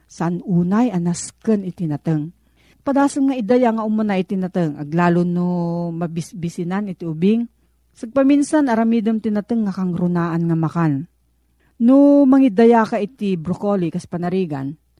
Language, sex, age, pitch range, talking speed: Filipino, female, 40-59, 170-230 Hz, 130 wpm